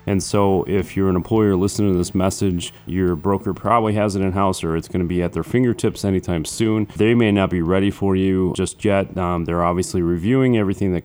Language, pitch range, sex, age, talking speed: English, 90-105 Hz, male, 30-49, 225 wpm